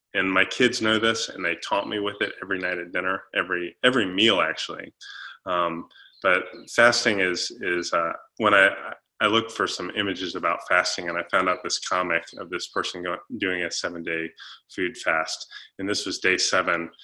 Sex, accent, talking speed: male, American, 195 wpm